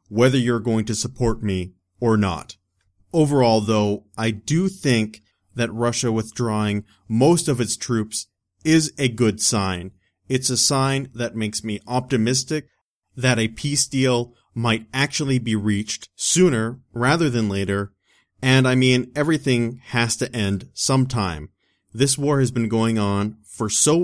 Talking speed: 145 wpm